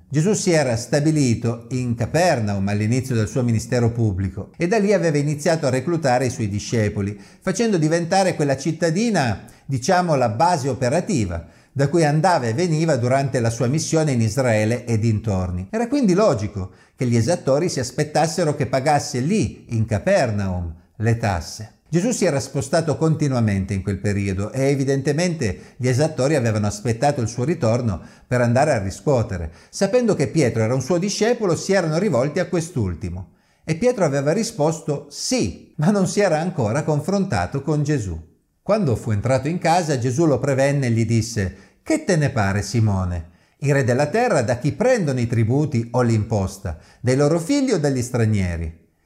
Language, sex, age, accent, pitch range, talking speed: Italian, male, 50-69, native, 110-160 Hz, 165 wpm